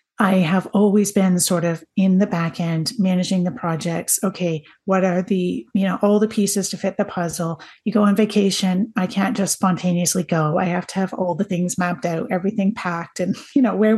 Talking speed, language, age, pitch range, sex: 215 wpm, English, 30-49, 180-210 Hz, female